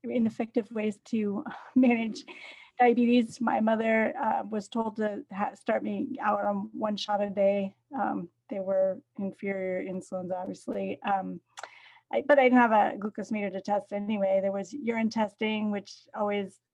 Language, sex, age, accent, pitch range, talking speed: English, female, 40-59, American, 200-245 Hz, 160 wpm